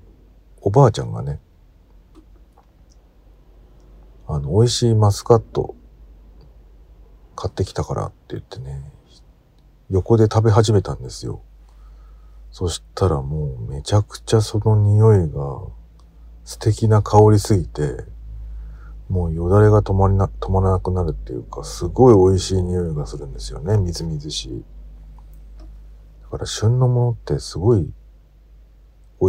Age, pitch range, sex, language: 50-69, 75-105 Hz, male, Japanese